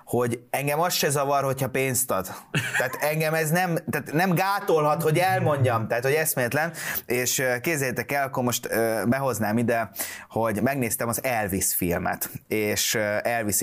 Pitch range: 105-130 Hz